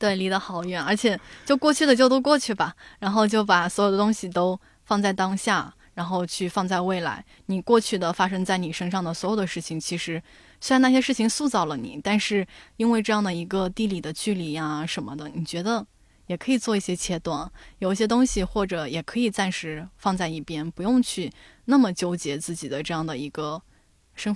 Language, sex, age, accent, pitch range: Chinese, female, 10-29, native, 170-220 Hz